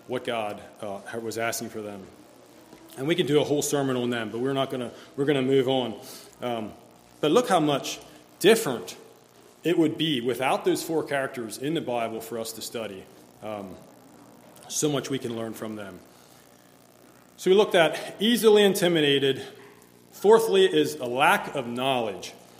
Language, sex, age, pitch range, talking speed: English, male, 30-49, 120-155 Hz, 165 wpm